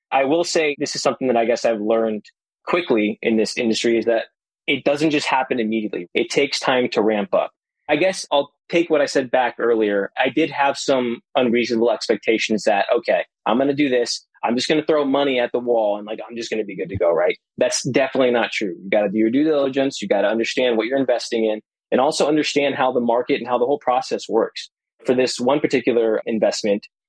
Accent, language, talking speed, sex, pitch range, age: American, English, 235 wpm, male, 110-135 Hz, 20-39